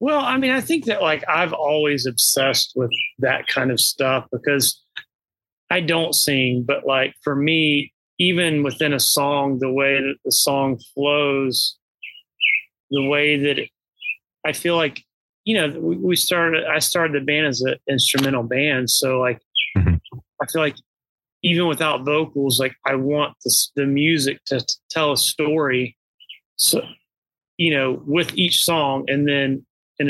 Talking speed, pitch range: 160 wpm, 130-155 Hz